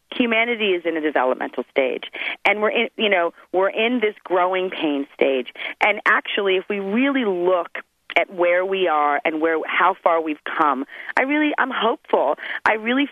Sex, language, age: female, English, 40-59